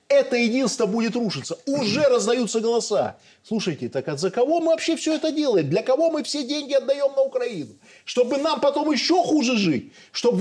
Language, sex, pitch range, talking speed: Russian, male, 215-300 Hz, 180 wpm